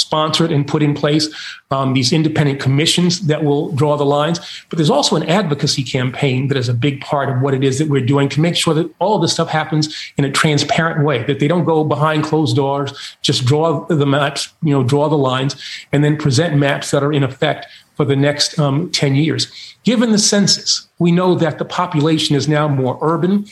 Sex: male